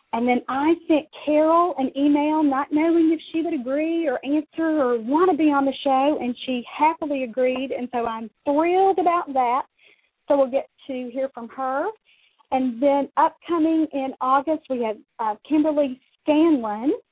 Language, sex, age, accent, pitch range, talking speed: English, female, 40-59, American, 240-310 Hz, 170 wpm